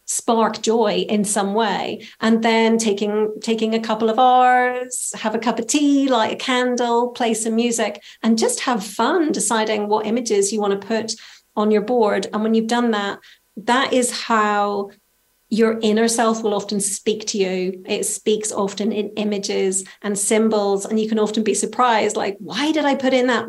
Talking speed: 190 wpm